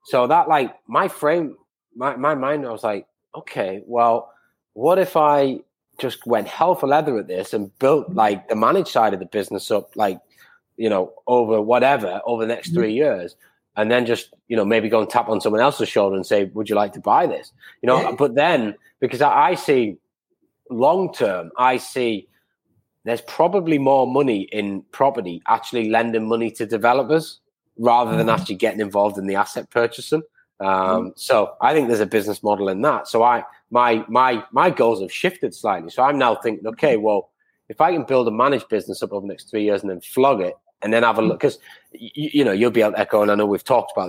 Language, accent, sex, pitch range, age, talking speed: English, British, male, 110-150 Hz, 20-39, 210 wpm